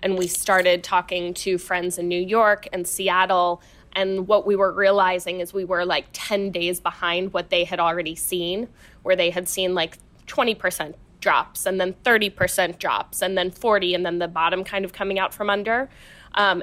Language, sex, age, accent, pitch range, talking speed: English, female, 10-29, American, 175-195 Hz, 190 wpm